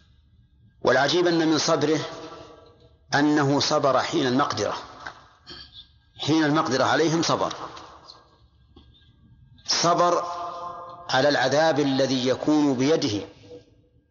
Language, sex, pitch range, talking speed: Arabic, male, 120-155 Hz, 75 wpm